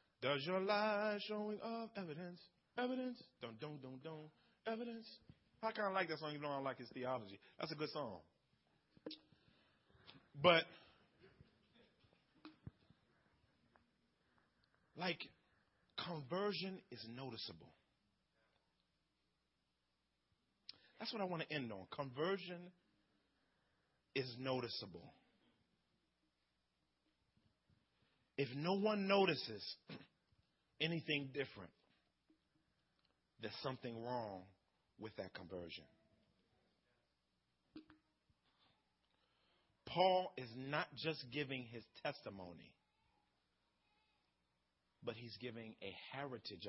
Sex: male